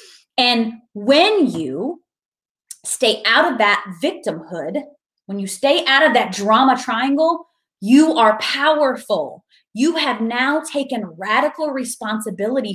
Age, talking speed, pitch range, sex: 30-49, 120 wpm, 185-265 Hz, female